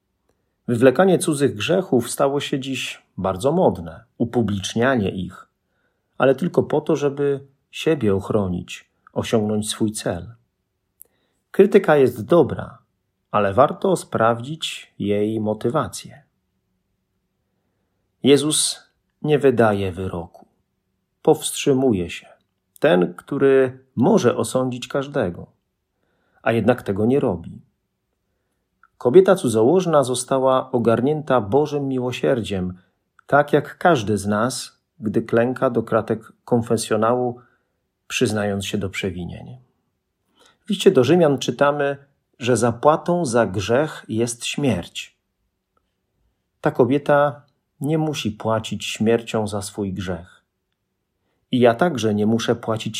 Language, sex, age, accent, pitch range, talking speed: Polish, male, 40-59, native, 105-140 Hz, 100 wpm